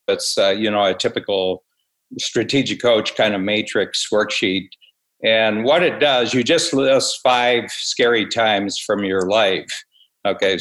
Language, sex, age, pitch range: English, male, 60-79, 100-130 Hz